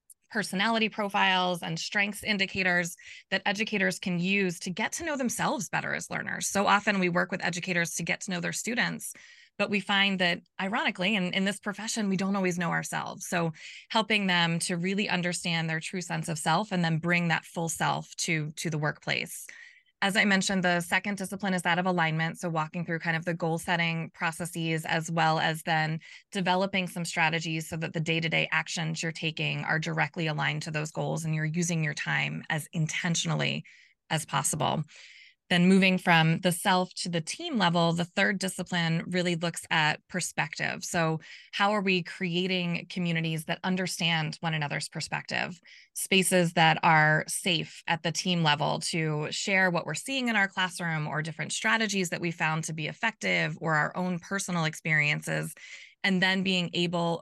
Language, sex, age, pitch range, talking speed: English, female, 20-39, 165-195 Hz, 180 wpm